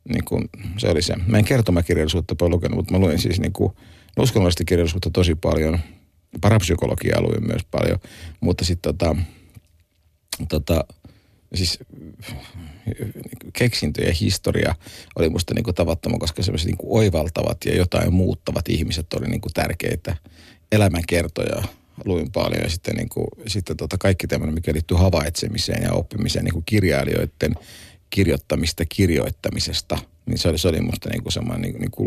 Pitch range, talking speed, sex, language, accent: 85-110 Hz, 140 wpm, male, Finnish, native